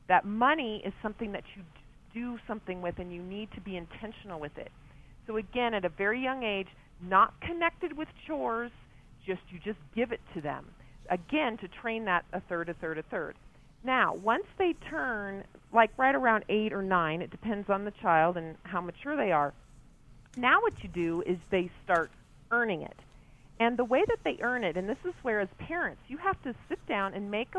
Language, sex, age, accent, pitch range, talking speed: English, female, 40-59, American, 175-240 Hz, 205 wpm